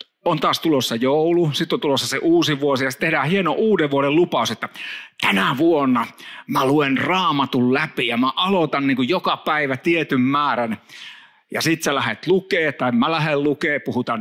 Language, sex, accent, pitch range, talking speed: Finnish, male, native, 130-190 Hz, 180 wpm